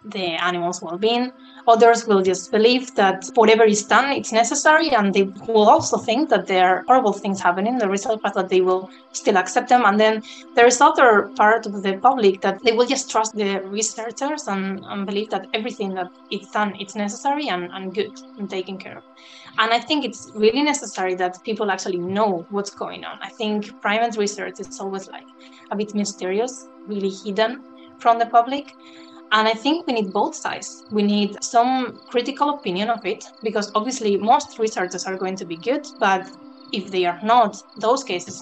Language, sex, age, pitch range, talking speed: English, female, 20-39, 190-235 Hz, 195 wpm